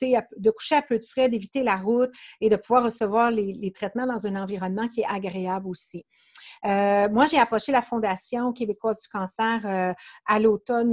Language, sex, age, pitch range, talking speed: French, female, 50-69, 195-235 Hz, 190 wpm